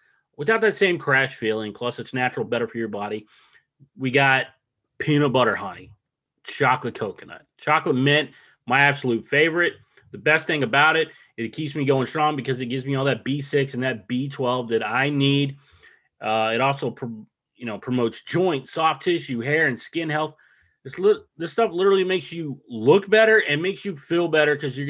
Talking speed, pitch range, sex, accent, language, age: 185 wpm, 120-155 Hz, male, American, English, 30-49